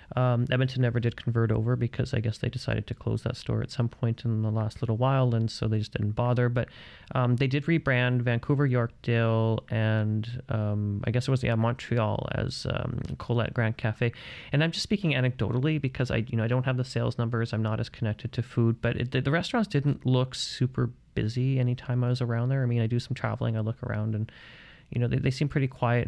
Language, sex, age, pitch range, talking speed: English, male, 30-49, 115-130 Hz, 230 wpm